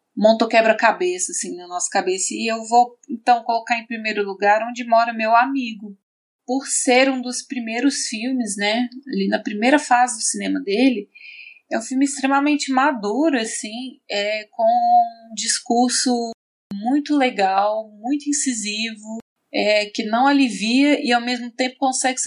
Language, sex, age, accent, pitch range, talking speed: Portuguese, female, 20-39, Brazilian, 210-265 Hz, 150 wpm